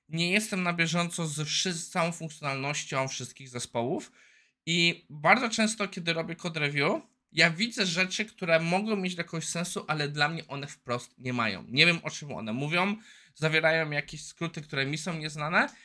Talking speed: 175 wpm